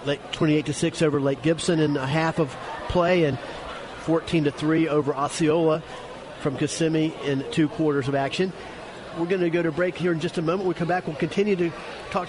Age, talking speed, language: 40-59, 210 wpm, English